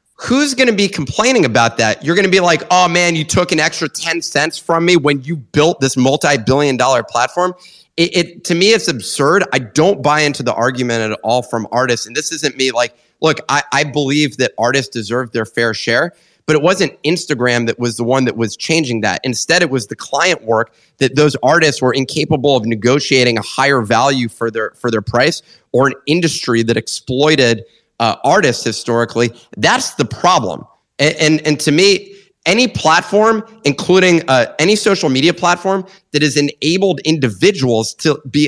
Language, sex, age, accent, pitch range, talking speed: English, male, 30-49, American, 125-170 Hz, 190 wpm